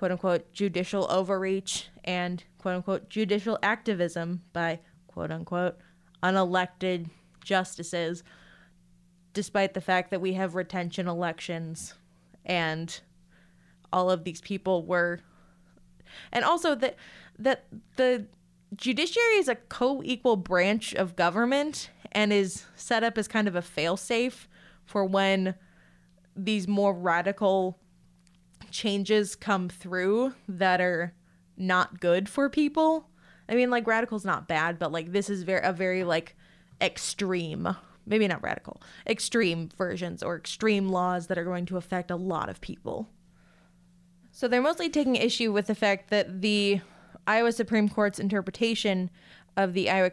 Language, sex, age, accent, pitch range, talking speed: English, female, 20-39, American, 175-210 Hz, 130 wpm